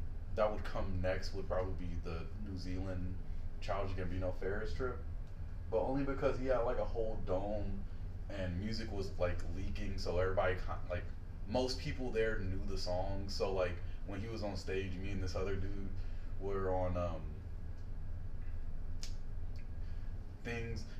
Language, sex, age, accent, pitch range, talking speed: English, male, 20-39, American, 90-105 Hz, 150 wpm